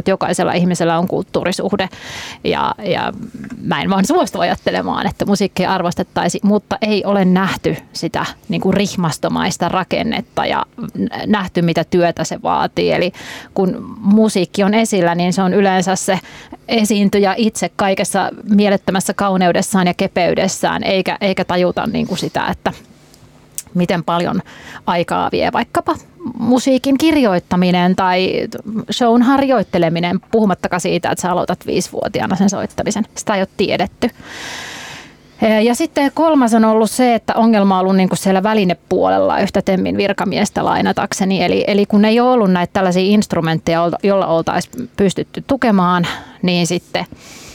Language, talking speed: Finnish, 130 wpm